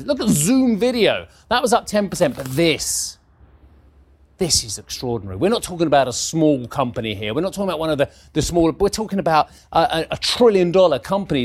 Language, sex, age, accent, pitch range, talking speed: English, male, 30-49, British, 145-210 Hz, 205 wpm